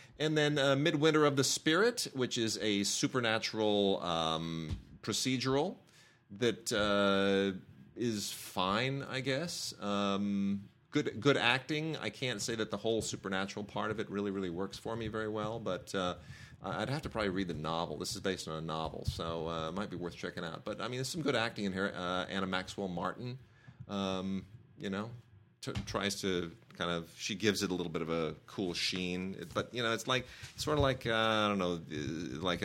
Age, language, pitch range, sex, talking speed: 40-59, English, 95-125 Hz, male, 195 wpm